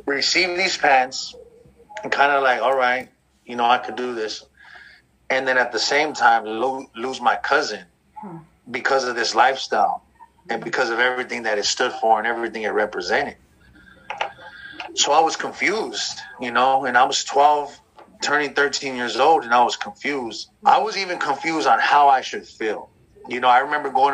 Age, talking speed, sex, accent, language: 30-49, 180 wpm, male, American, English